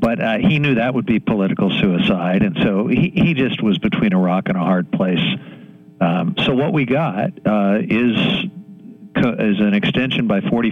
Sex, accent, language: male, American, English